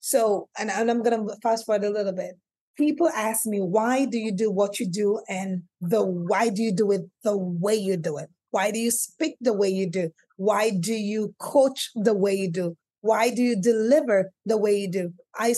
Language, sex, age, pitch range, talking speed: English, female, 30-49, 210-270 Hz, 220 wpm